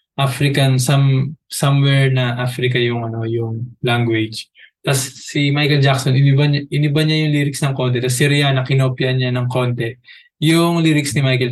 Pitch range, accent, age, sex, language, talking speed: 125-145 Hz, native, 20-39, male, Filipino, 160 wpm